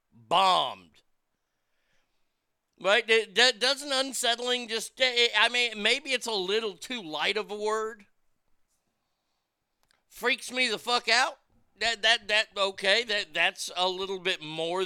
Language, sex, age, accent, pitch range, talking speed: English, male, 50-69, American, 160-220 Hz, 130 wpm